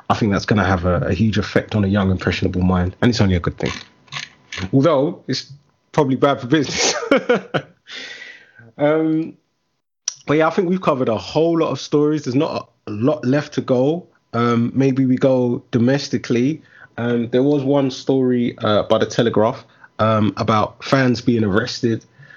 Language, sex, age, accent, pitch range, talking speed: English, male, 20-39, British, 100-130 Hz, 175 wpm